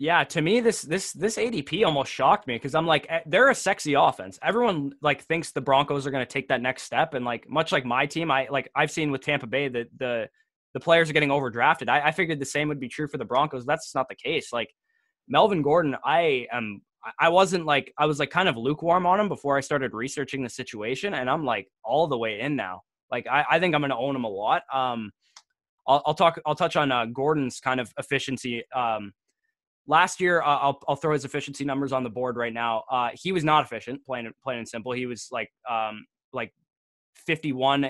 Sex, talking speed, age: male, 230 wpm, 10-29